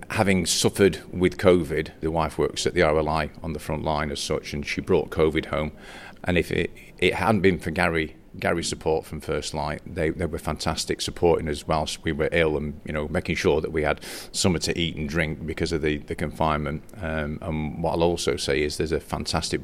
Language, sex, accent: English, male, British